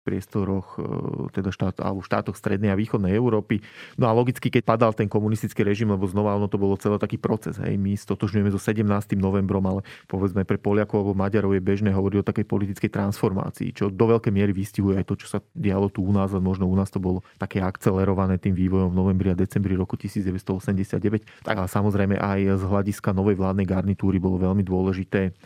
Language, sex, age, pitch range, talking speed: Slovak, male, 30-49, 95-105 Hz, 200 wpm